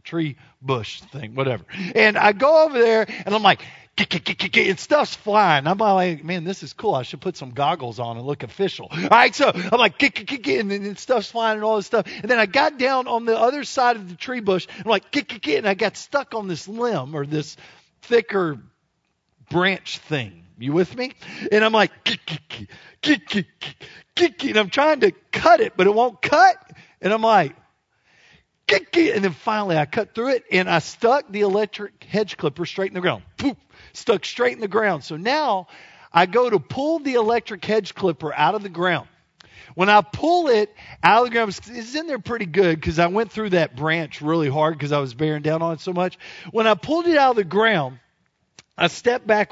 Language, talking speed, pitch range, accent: English, 205 wpm, 165-235 Hz, American